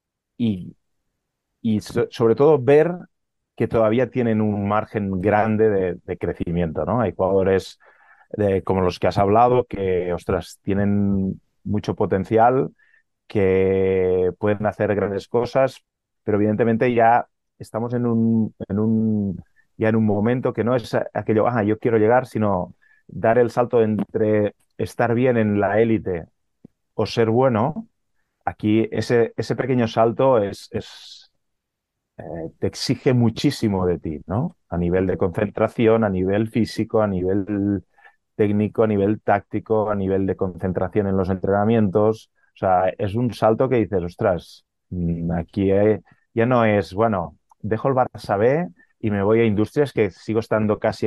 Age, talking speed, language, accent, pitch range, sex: 30-49, 150 wpm, Spanish, Spanish, 95-115 Hz, male